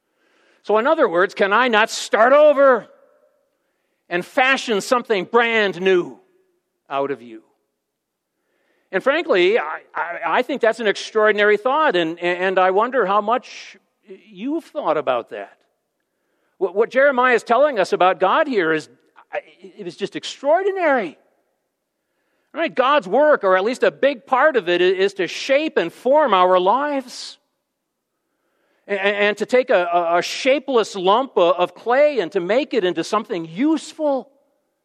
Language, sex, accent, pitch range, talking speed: English, male, American, 185-285 Hz, 145 wpm